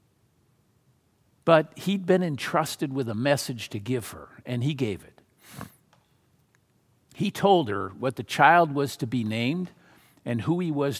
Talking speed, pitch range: 155 wpm, 115-145 Hz